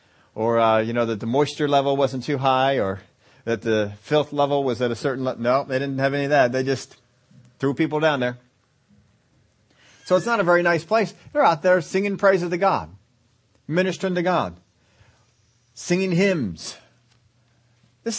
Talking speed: 180 wpm